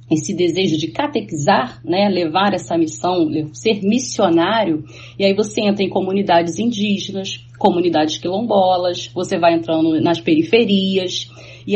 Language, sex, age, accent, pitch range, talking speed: Portuguese, female, 30-49, Brazilian, 165-235 Hz, 130 wpm